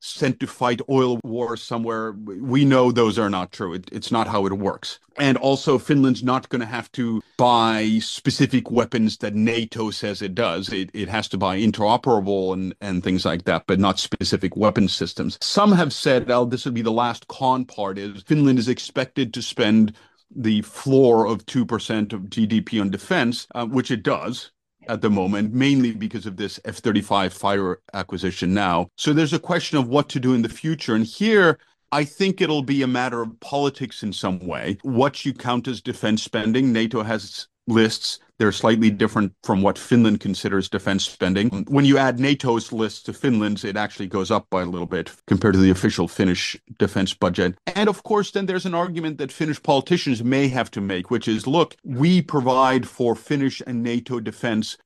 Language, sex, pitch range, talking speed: English, male, 100-130 Hz, 195 wpm